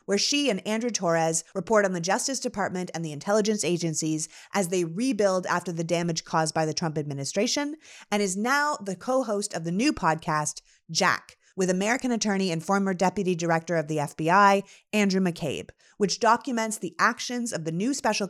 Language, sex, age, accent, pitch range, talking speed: English, female, 30-49, American, 170-225 Hz, 180 wpm